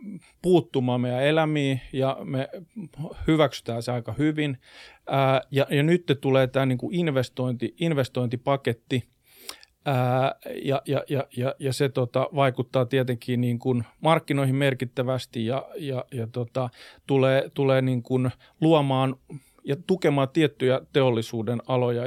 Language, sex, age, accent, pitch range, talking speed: Finnish, male, 40-59, native, 125-155 Hz, 120 wpm